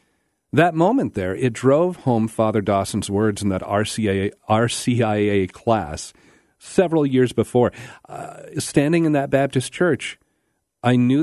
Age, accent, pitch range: 40-59, American, 105-140 Hz